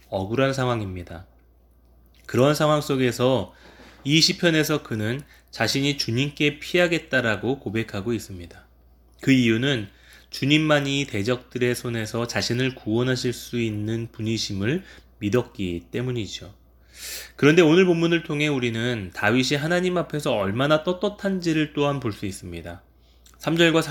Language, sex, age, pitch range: Korean, male, 20-39, 105-145 Hz